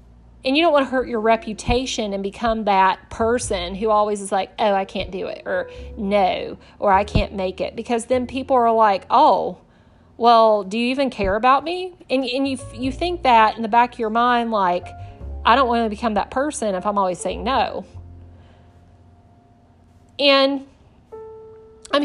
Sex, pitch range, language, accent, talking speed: female, 190-245 Hz, English, American, 185 wpm